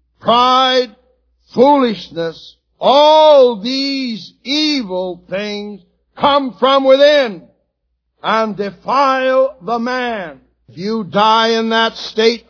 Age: 60-79